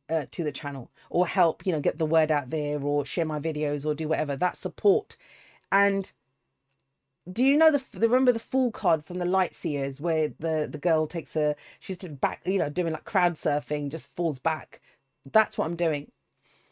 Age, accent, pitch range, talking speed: 40-59, British, 155-200 Hz, 205 wpm